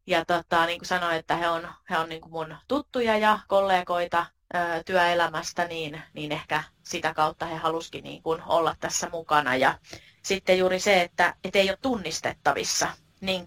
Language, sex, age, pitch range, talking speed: Finnish, female, 30-49, 155-180 Hz, 175 wpm